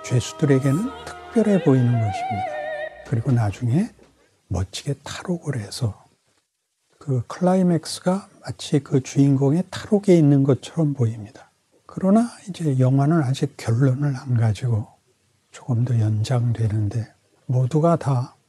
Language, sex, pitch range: Korean, male, 115-155 Hz